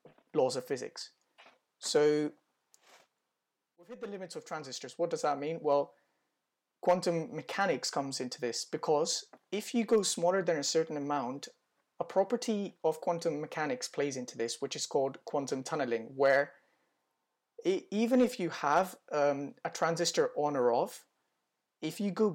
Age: 20-39